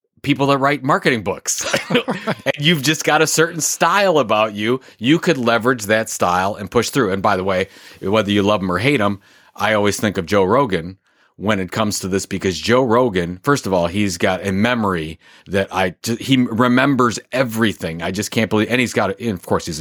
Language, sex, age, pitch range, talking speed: English, male, 30-49, 100-125 Hz, 220 wpm